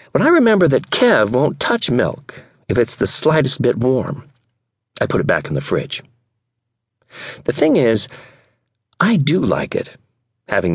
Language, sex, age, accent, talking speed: English, male, 40-59, American, 160 wpm